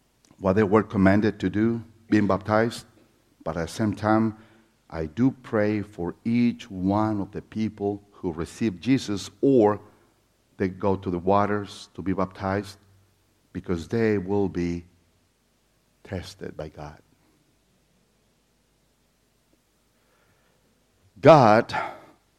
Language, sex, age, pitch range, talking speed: English, male, 60-79, 95-135 Hz, 115 wpm